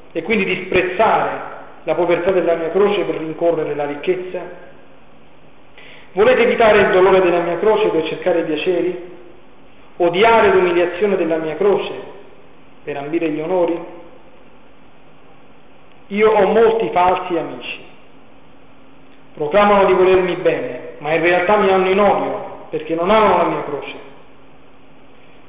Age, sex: 40-59, male